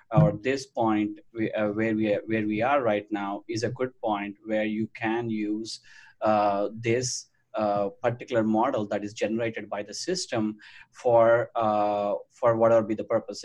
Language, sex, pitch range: English, male, 110-130 Hz